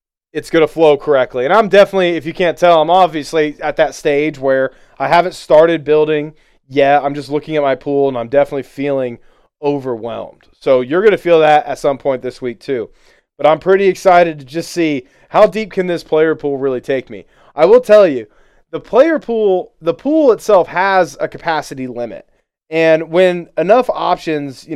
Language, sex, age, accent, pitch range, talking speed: English, male, 20-39, American, 135-175 Hz, 195 wpm